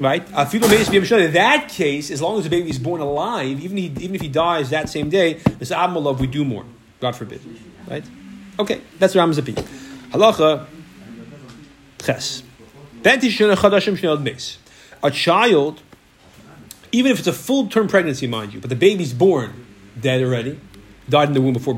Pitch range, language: 115-170 Hz, English